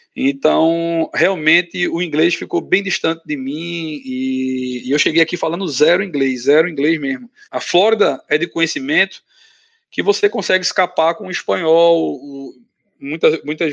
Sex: male